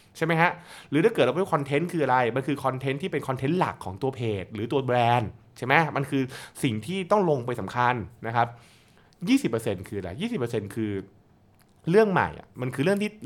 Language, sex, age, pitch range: Thai, male, 20-39, 110-150 Hz